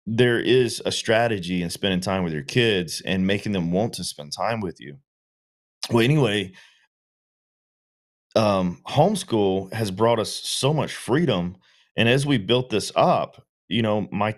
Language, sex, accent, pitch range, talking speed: English, male, American, 95-115 Hz, 160 wpm